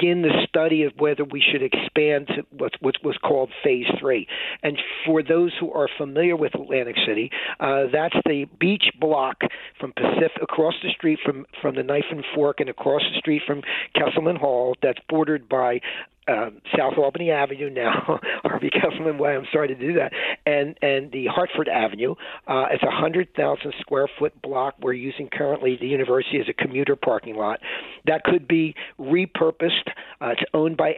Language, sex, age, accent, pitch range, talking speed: English, male, 50-69, American, 145-175 Hz, 180 wpm